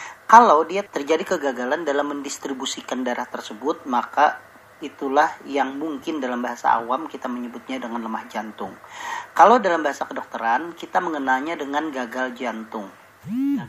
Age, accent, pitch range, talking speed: 40-59, native, 125-150 Hz, 130 wpm